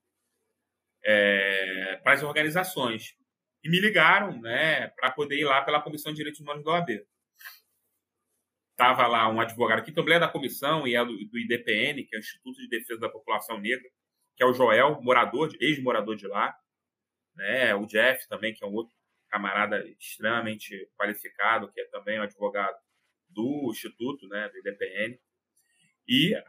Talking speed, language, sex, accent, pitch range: 165 wpm, Portuguese, male, Brazilian, 125-170 Hz